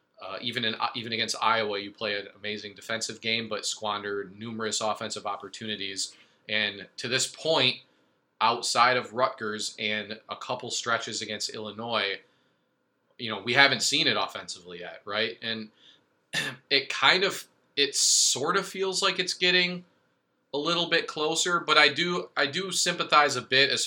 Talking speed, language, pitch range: 160 wpm, English, 110-135 Hz